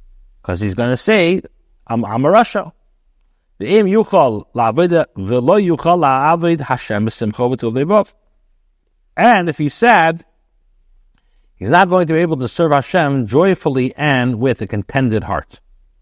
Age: 60-79